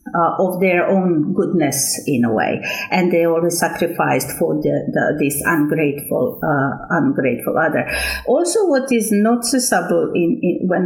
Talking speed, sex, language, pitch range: 150 wpm, female, English, 180-230 Hz